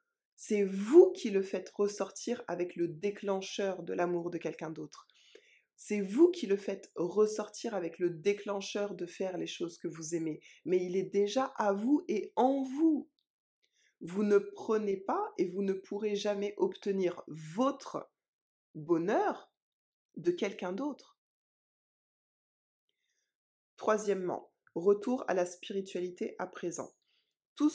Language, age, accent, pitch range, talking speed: French, 20-39, French, 185-265 Hz, 135 wpm